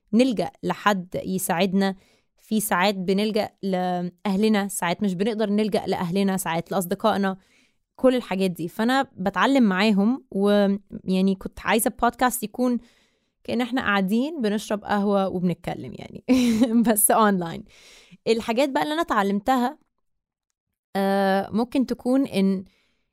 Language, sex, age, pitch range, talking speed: Arabic, female, 20-39, 195-245 Hz, 110 wpm